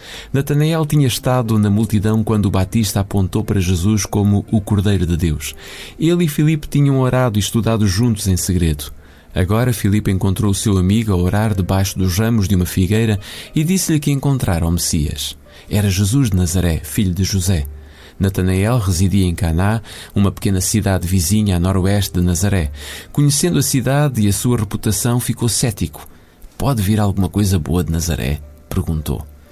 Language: Portuguese